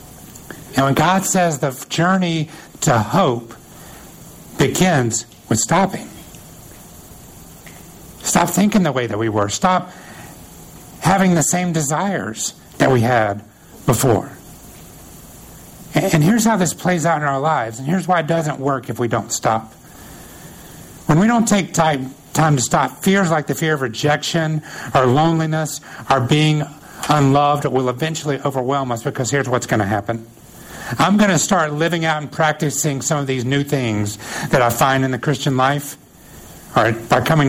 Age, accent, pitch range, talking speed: 60-79, American, 125-160 Hz, 155 wpm